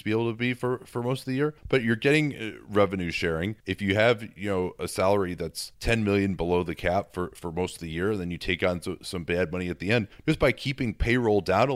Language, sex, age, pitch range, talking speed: English, male, 30-49, 85-105 Hz, 255 wpm